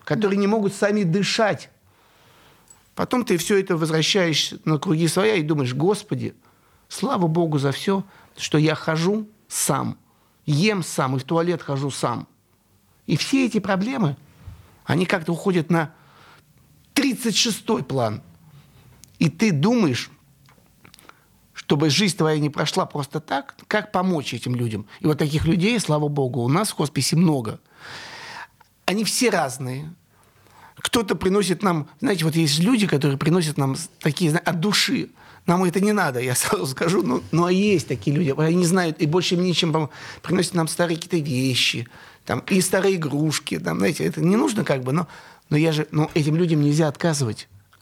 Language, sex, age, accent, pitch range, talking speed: Russian, male, 50-69, native, 140-185 Hz, 160 wpm